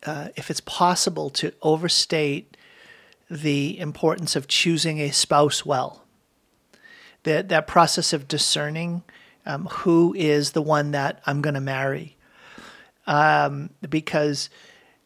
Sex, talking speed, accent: male, 120 wpm, American